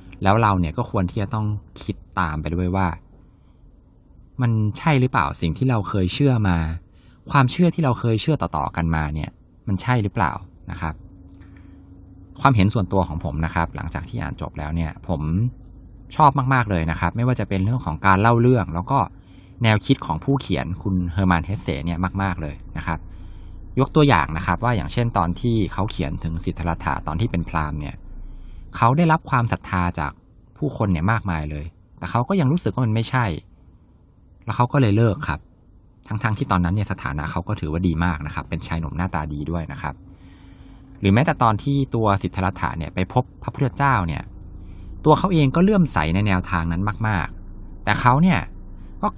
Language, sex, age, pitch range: Thai, male, 20-39, 85-115 Hz